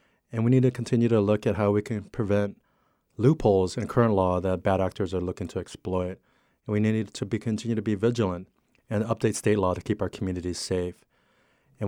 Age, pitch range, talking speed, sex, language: 30-49, 95-110 Hz, 205 wpm, male, English